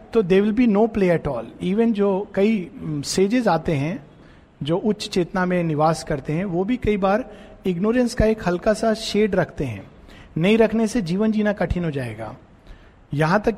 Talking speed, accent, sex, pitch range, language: 185 wpm, native, male, 160-215 Hz, Hindi